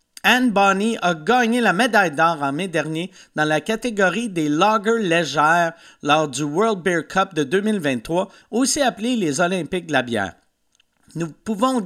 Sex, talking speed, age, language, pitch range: male, 160 wpm, 50-69, French, 175-245 Hz